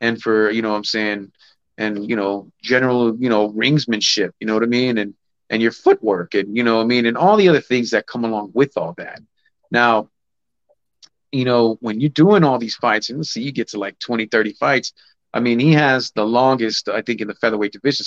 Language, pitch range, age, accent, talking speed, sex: English, 105-120 Hz, 30-49, American, 235 wpm, male